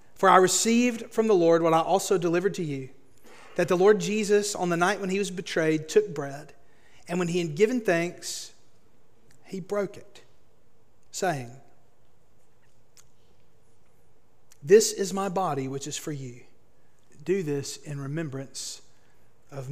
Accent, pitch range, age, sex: American, 145-180 Hz, 40-59, male